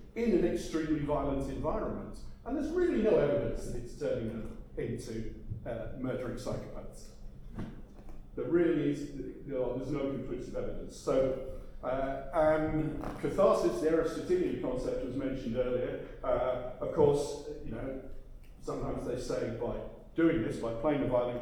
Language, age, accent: English, 40-59, British